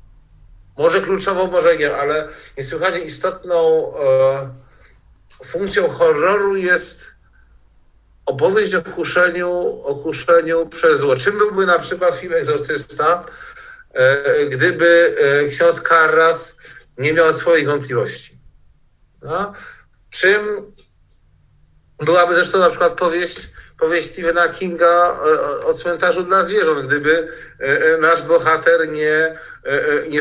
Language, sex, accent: Polish, male, native